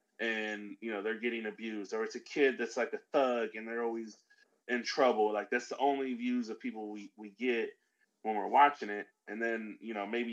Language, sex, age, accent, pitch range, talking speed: English, male, 20-39, American, 105-130 Hz, 220 wpm